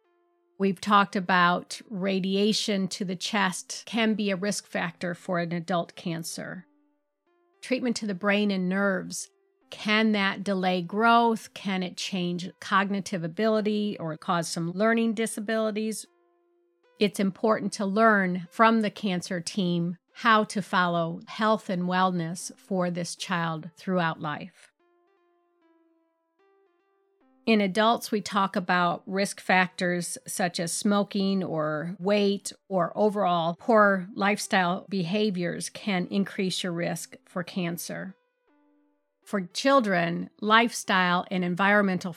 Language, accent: English, American